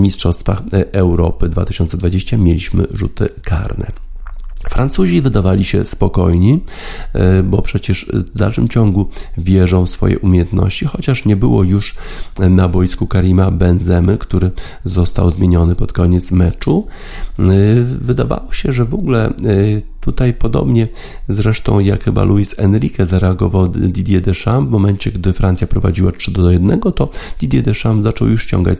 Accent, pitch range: native, 90-105 Hz